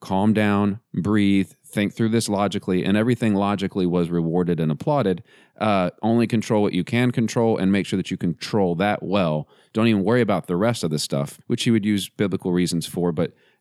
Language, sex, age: English, male, 30-49